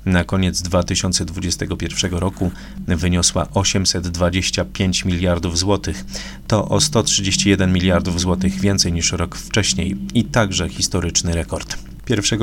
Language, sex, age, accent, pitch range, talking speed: Polish, male, 30-49, native, 90-100 Hz, 105 wpm